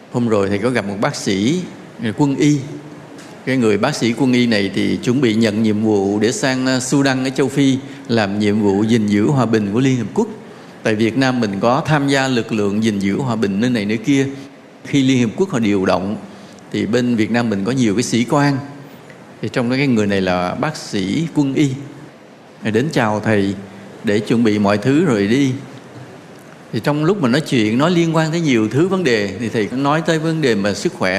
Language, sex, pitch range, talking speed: English, male, 110-145 Hz, 225 wpm